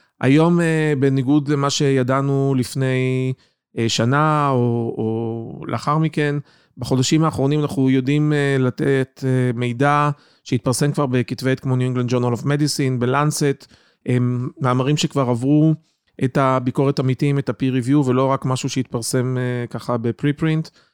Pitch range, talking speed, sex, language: 125-145 Hz, 120 wpm, male, Hebrew